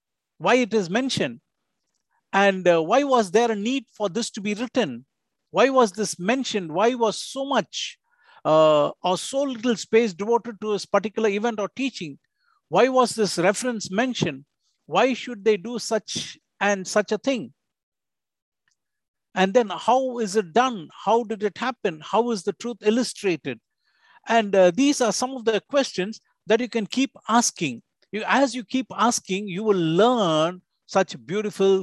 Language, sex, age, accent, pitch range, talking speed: English, male, 50-69, Indian, 190-245 Hz, 165 wpm